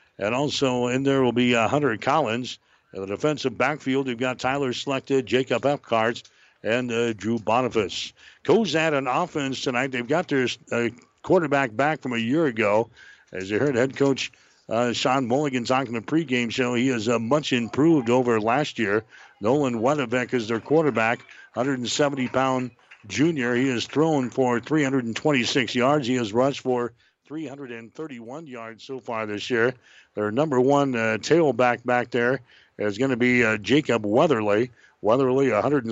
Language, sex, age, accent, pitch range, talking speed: English, male, 60-79, American, 120-140 Hz, 160 wpm